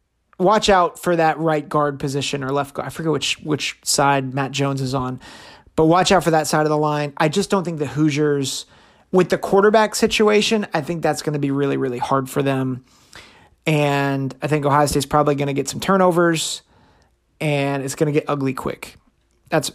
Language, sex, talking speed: English, male, 205 wpm